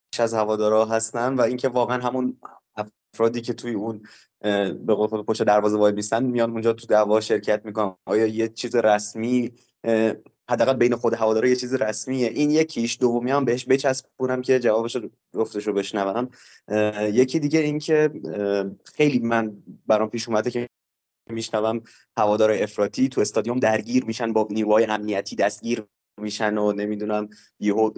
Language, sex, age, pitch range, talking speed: Persian, male, 20-39, 110-135 Hz, 140 wpm